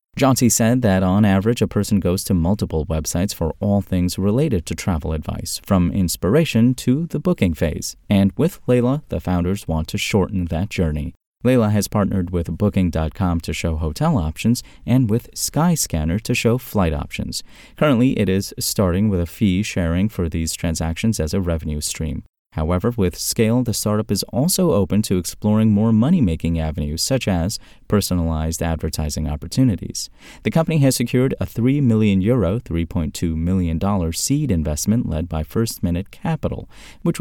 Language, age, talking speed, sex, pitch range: English, 30-49, 165 wpm, male, 85-115 Hz